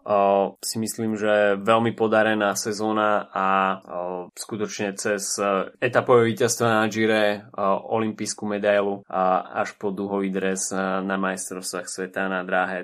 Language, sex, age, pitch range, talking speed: Slovak, male, 20-39, 95-110 Hz, 115 wpm